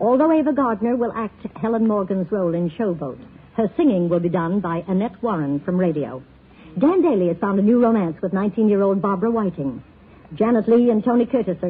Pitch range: 165-225 Hz